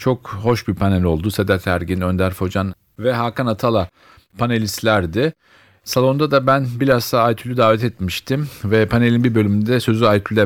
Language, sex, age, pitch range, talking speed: Turkish, male, 40-59, 95-115 Hz, 150 wpm